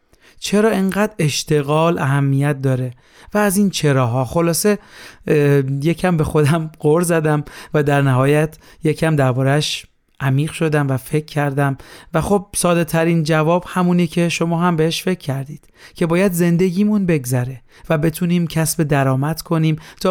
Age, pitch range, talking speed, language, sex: 40-59, 140-170 Hz, 140 wpm, Persian, male